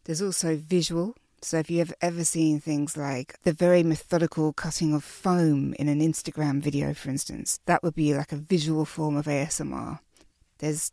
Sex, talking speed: female, 180 wpm